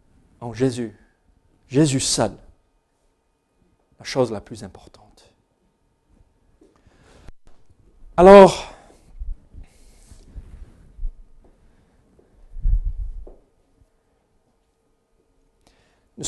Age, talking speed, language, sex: 50-69, 40 wpm, French, male